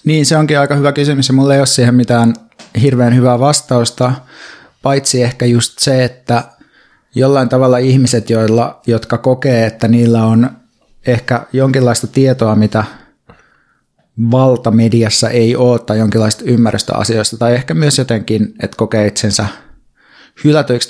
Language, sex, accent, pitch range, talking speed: Finnish, male, native, 110-130 Hz, 135 wpm